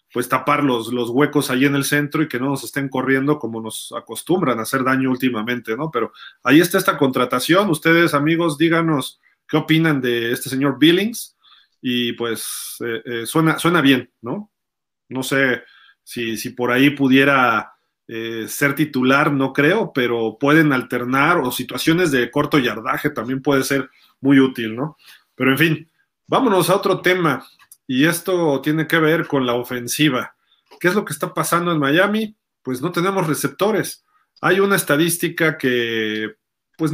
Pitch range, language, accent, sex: 125-160 Hz, Spanish, Mexican, male